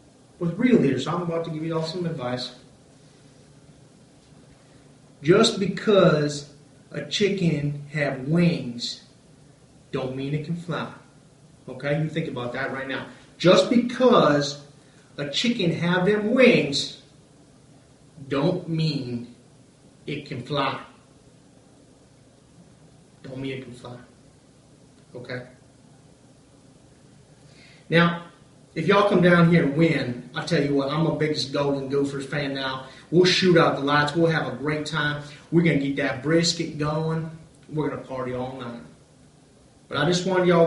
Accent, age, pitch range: American, 30-49, 135-160 Hz